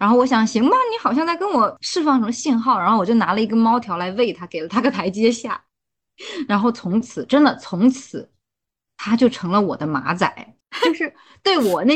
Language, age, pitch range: Chinese, 20-39, 210-285 Hz